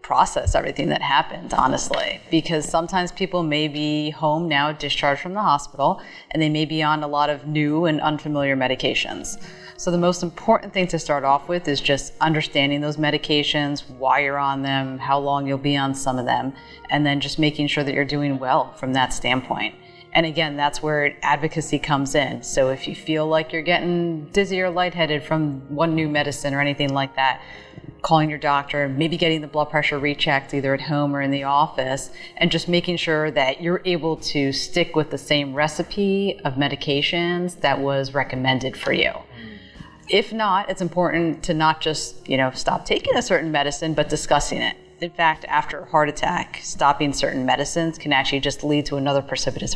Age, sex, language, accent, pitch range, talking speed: 30-49, female, English, American, 140-165 Hz, 195 wpm